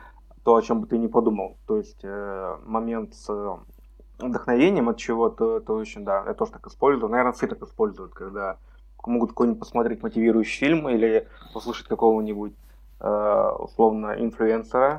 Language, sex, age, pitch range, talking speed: Russian, male, 20-39, 100-115 Hz, 155 wpm